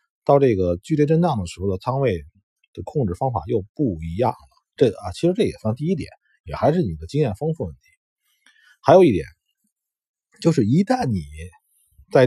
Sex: male